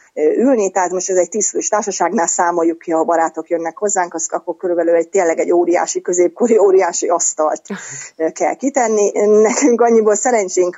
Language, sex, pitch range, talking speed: Hungarian, female, 165-205 Hz, 160 wpm